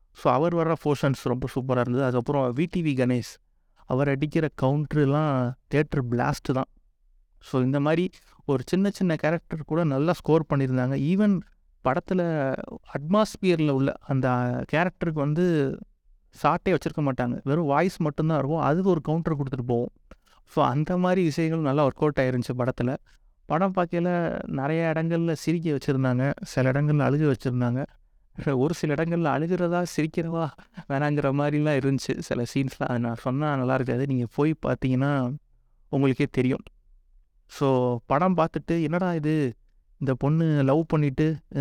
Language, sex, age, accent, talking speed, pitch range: Tamil, male, 30-49, native, 135 wpm, 130-160 Hz